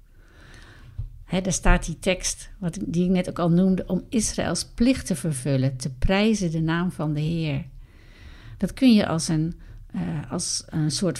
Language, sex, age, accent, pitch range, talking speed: Dutch, female, 60-79, Dutch, 130-185 Hz, 180 wpm